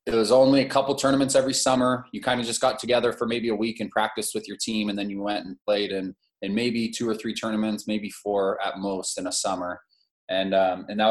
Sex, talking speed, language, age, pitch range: male, 255 wpm, English, 20-39, 105-120 Hz